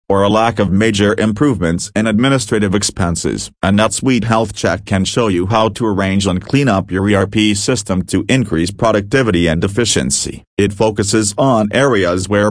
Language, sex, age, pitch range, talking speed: English, male, 40-59, 95-115 Hz, 170 wpm